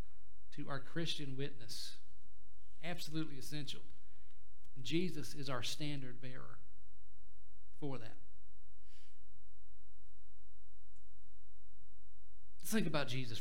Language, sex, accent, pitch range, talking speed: English, male, American, 95-130 Hz, 70 wpm